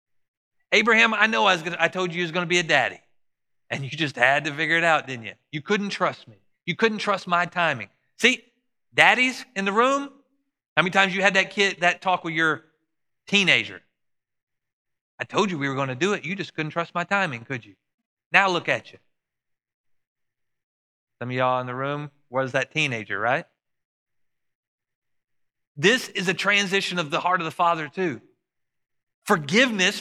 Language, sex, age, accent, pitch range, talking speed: English, male, 40-59, American, 160-220 Hz, 190 wpm